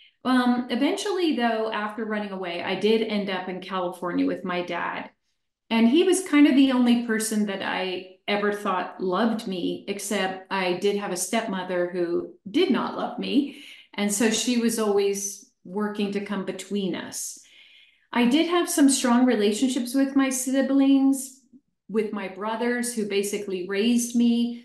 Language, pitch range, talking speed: English, 195-255 Hz, 160 wpm